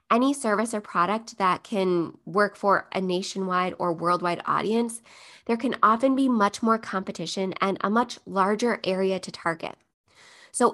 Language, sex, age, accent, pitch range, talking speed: English, female, 20-39, American, 185-230 Hz, 155 wpm